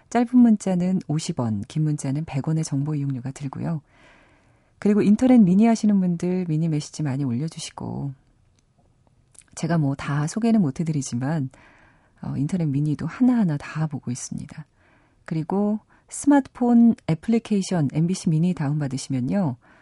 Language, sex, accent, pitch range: Korean, female, native, 130-175 Hz